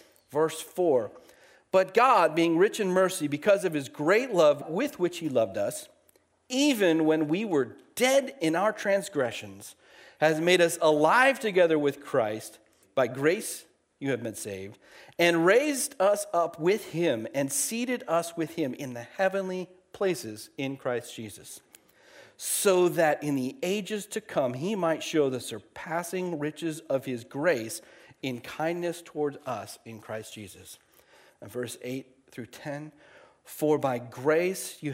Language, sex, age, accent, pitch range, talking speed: English, male, 40-59, American, 125-175 Hz, 155 wpm